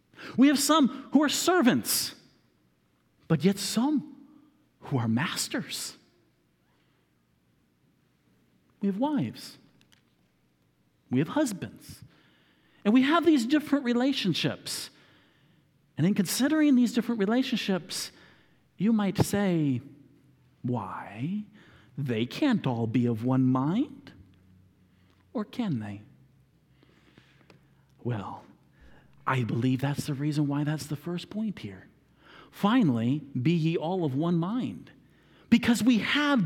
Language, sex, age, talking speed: English, male, 50-69, 110 wpm